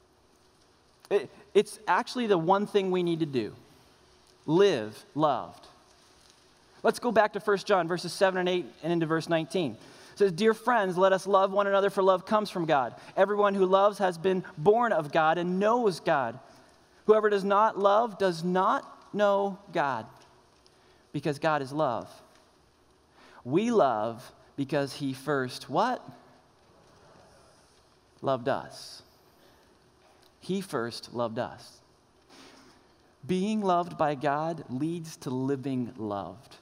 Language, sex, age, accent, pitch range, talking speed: English, male, 30-49, American, 140-190 Hz, 135 wpm